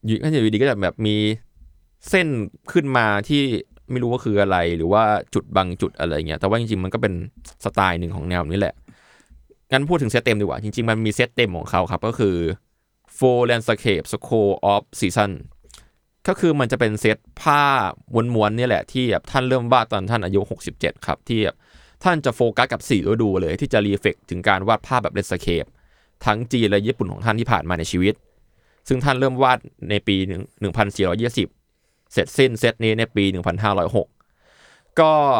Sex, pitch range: male, 95-125 Hz